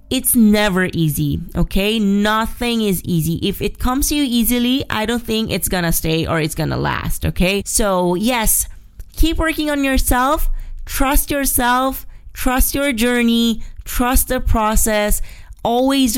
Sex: female